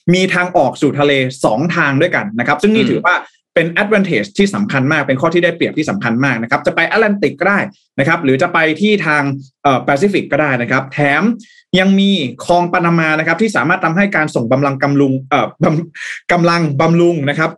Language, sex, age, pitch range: Thai, male, 20-39, 135-180 Hz